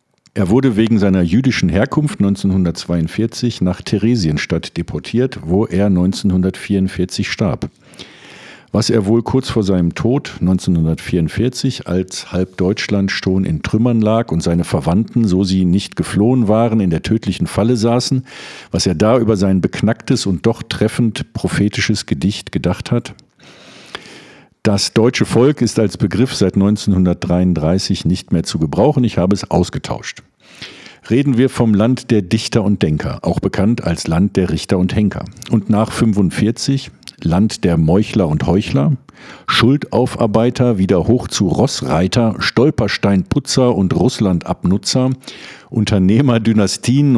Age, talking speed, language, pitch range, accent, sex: 50-69, 130 wpm, German, 95-120 Hz, German, male